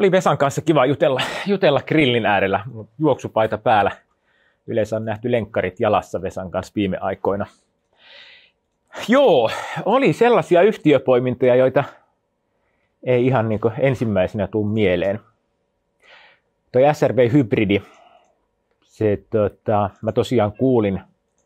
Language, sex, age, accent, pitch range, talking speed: Finnish, male, 30-49, native, 110-155 Hz, 105 wpm